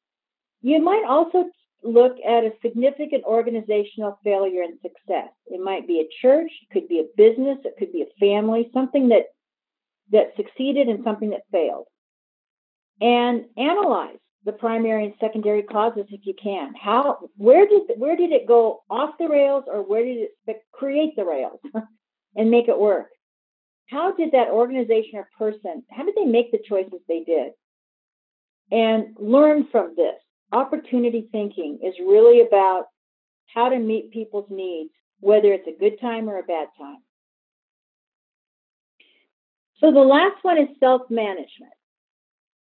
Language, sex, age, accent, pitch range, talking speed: English, female, 50-69, American, 205-275 Hz, 150 wpm